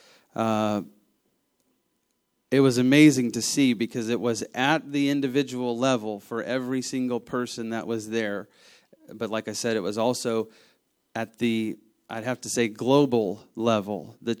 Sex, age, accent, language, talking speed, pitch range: male, 30-49, American, English, 150 wpm, 110-125 Hz